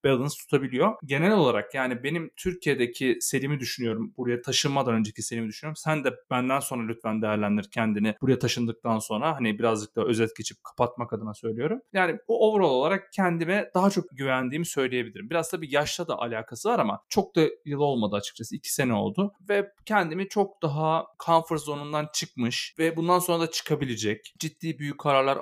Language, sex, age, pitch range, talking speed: Turkish, male, 30-49, 130-165 Hz, 170 wpm